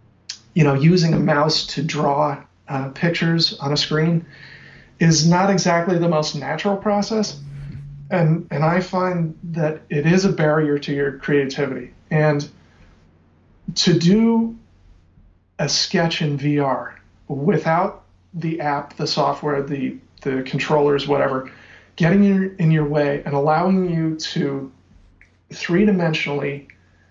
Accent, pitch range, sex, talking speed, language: American, 140-170 Hz, male, 125 wpm, English